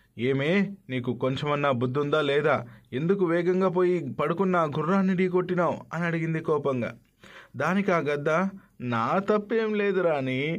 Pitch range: 135-195 Hz